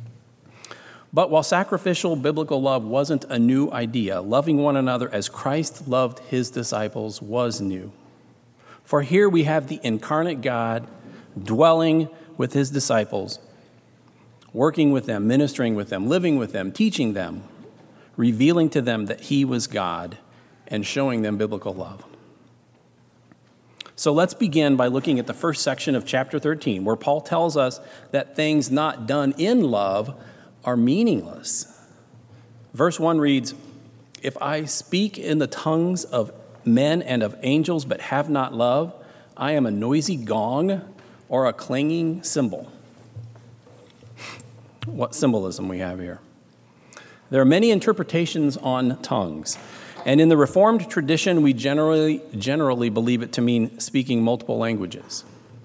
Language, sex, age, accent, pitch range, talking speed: English, male, 40-59, American, 115-155 Hz, 140 wpm